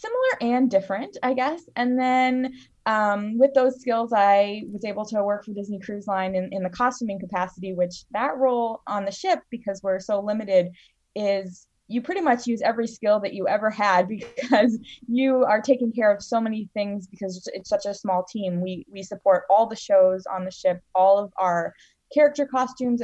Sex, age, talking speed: female, 20-39, 195 wpm